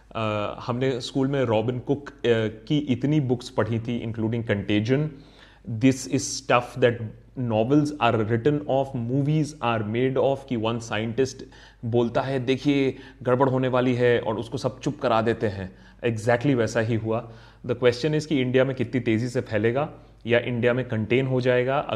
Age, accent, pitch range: 30-49, native, 115-135 Hz